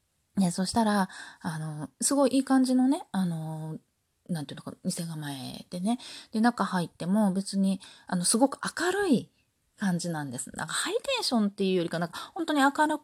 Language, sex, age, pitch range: Japanese, female, 20-39, 165-235 Hz